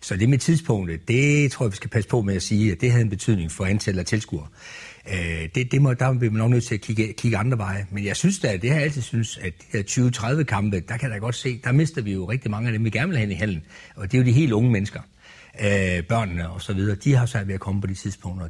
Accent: native